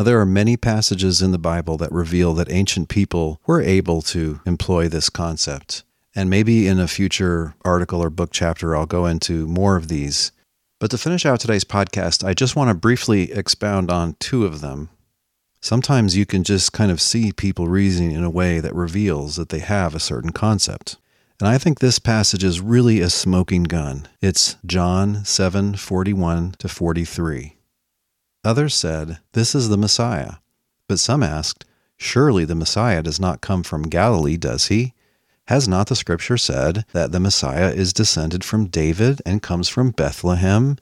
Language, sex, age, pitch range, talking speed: English, male, 40-59, 85-105 Hz, 180 wpm